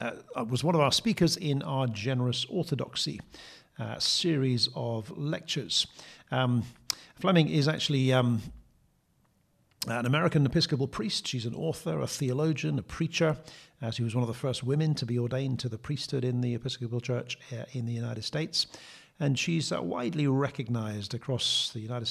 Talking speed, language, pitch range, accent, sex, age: 165 wpm, English, 120-145 Hz, British, male, 50-69